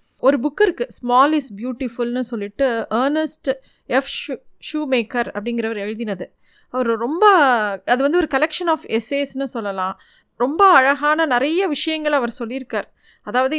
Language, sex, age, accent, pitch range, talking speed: Tamil, female, 30-49, native, 235-305 Hz, 130 wpm